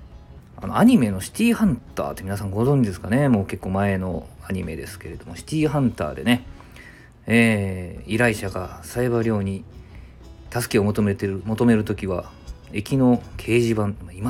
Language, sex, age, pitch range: Japanese, male, 40-59, 85-120 Hz